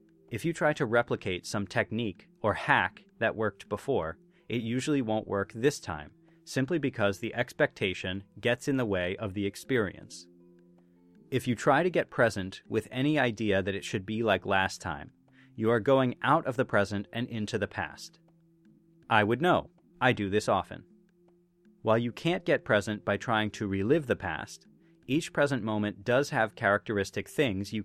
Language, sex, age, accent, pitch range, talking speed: English, male, 30-49, American, 100-145 Hz, 175 wpm